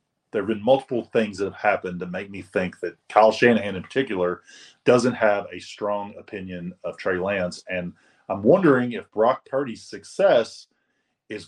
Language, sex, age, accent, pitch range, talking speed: English, male, 30-49, American, 95-120 Hz, 175 wpm